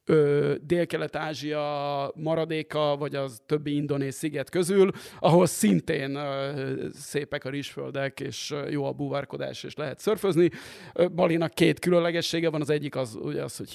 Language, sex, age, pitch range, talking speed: Hungarian, male, 30-49, 140-175 Hz, 130 wpm